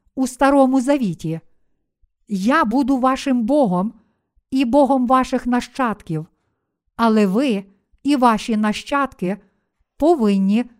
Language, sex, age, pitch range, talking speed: Ukrainian, female, 50-69, 210-255 Hz, 95 wpm